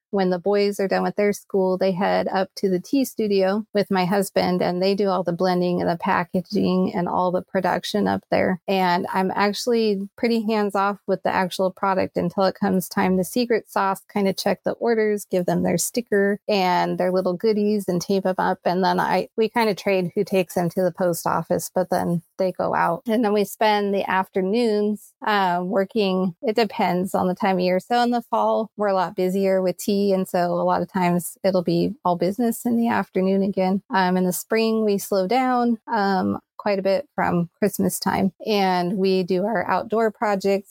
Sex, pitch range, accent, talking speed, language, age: female, 185-205 Hz, American, 215 wpm, English, 30-49